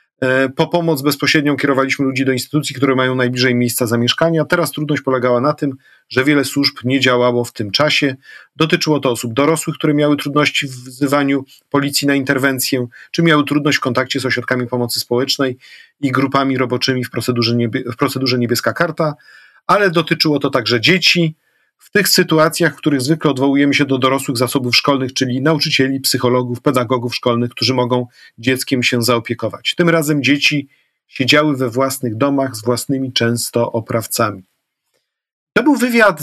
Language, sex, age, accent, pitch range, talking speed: Polish, male, 40-59, native, 125-150 Hz, 160 wpm